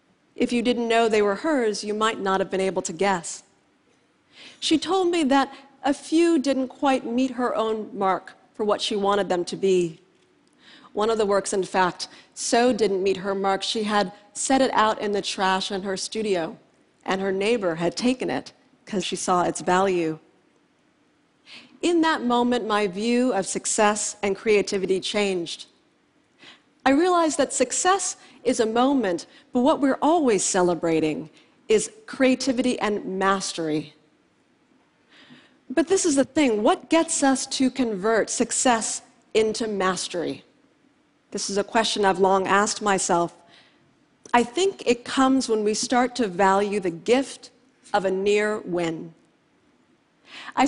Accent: American